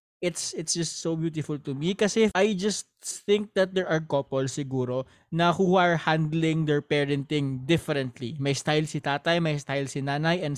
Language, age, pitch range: Filipino, 20-39, 145-185 Hz